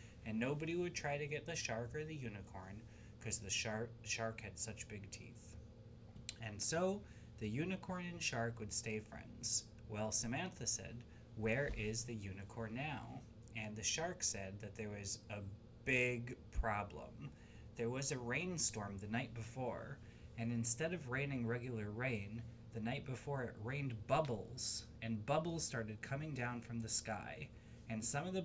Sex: male